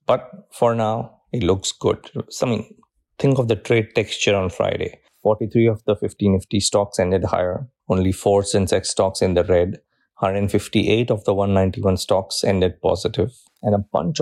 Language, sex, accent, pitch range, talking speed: English, male, Indian, 95-105 Hz, 170 wpm